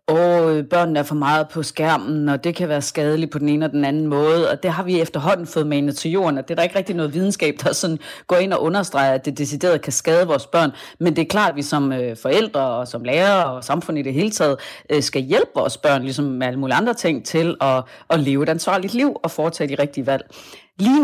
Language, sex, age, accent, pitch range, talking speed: Danish, female, 30-49, native, 145-185 Hz, 250 wpm